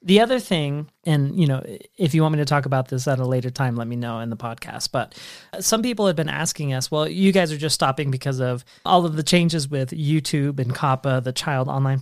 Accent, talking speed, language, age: American, 250 wpm, English, 30-49